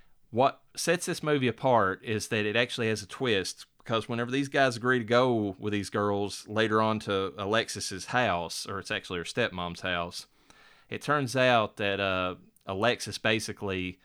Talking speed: 170 wpm